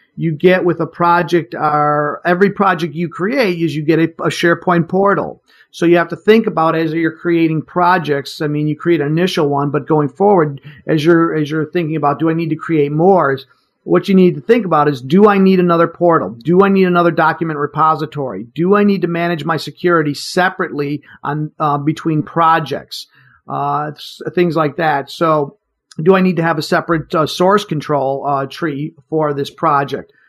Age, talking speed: 50-69, 200 wpm